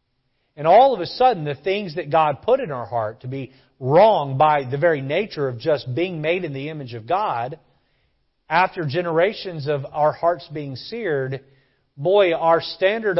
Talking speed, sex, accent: 175 wpm, male, American